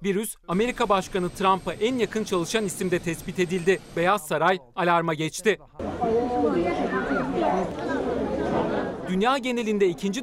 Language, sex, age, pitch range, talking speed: Turkish, male, 40-59, 175-210 Hz, 100 wpm